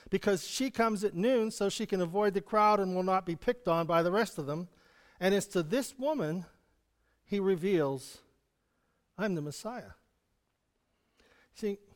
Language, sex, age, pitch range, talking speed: English, male, 50-69, 160-235 Hz, 165 wpm